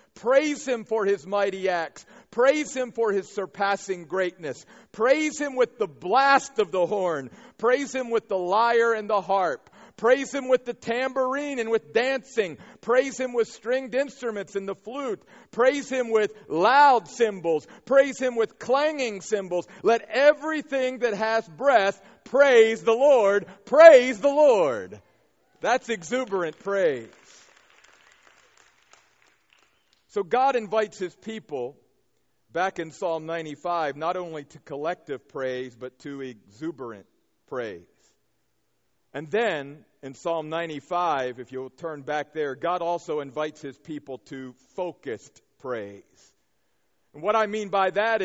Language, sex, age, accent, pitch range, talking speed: English, male, 50-69, American, 180-250 Hz, 135 wpm